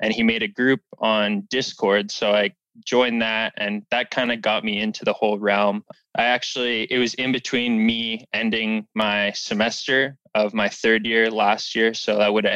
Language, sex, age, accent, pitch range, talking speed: English, male, 20-39, American, 110-125 Hz, 195 wpm